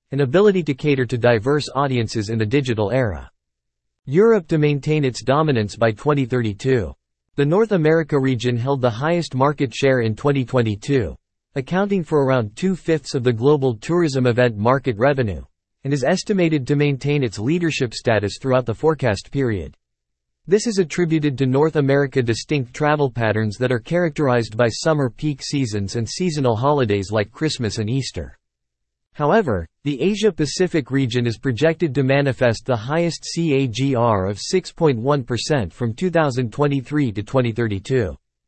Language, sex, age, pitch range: English, male, 40-59, 115-150 Hz